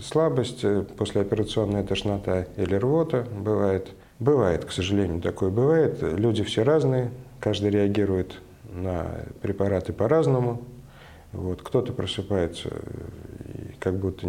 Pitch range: 90-115 Hz